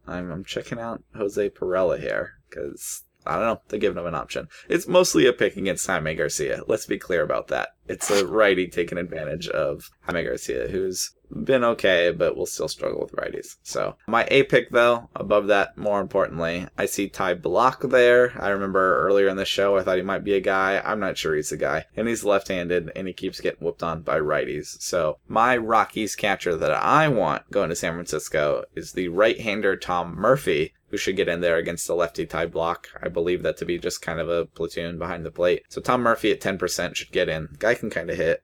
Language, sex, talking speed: English, male, 220 wpm